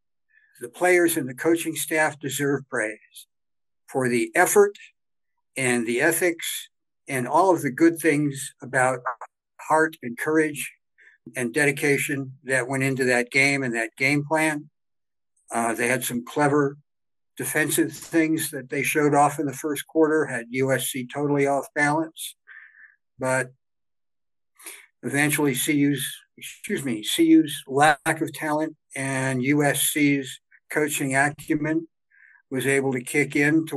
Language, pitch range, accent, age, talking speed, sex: English, 120-150 Hz, American, 60-79, 130 wpm, male